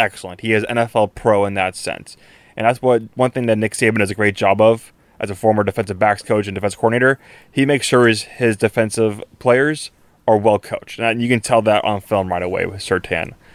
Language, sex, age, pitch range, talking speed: English, male, 20-39, 105-130 Hz, 235 wpm